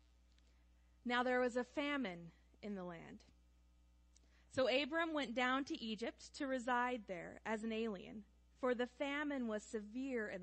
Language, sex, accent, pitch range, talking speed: English, female, American, 170-265 Hz, 150 wpm